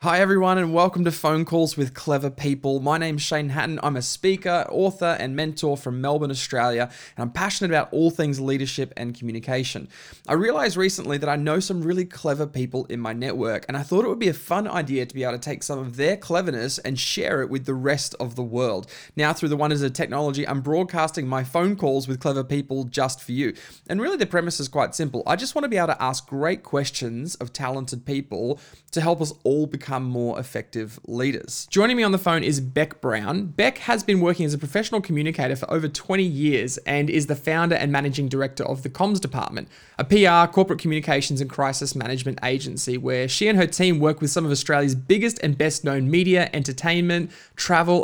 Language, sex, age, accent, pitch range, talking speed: English, male, 20-39, Australian, 135-170 Hz, 215 wpm